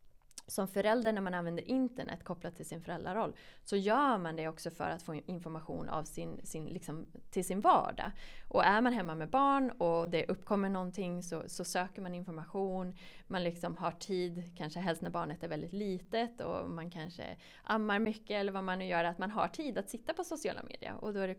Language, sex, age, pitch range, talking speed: Swedish, female, 20-39, 165-220 Hz, 210 wpm